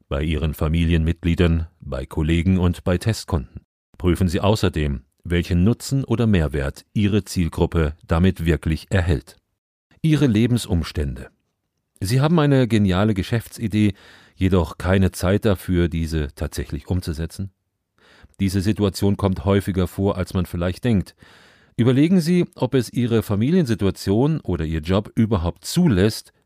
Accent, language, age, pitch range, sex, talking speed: German, German, 40-59, 90-115 Hz, male, 120 wpm